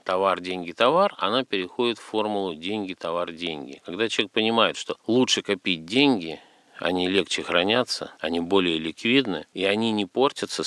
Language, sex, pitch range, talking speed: Russian, male, 85-115 Hz, 150 wpm